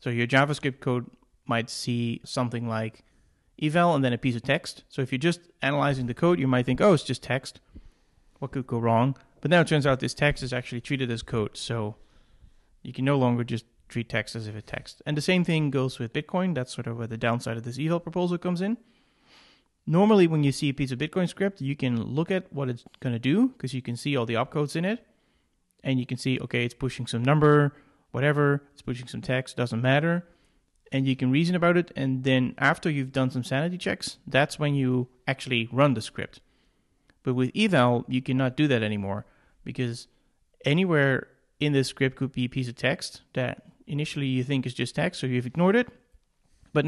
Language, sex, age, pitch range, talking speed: English, male, 30-49, 120-150 Hz, 220 wpm